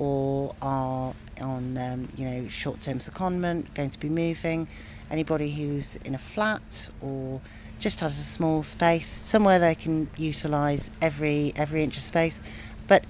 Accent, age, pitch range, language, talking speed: British, 40-59, 140-165 Hz, English, 135 wpm